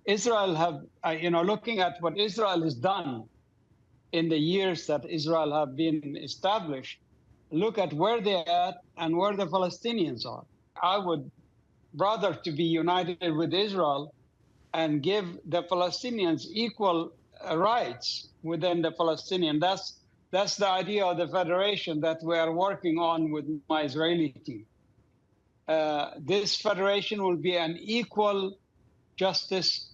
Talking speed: 140 wpm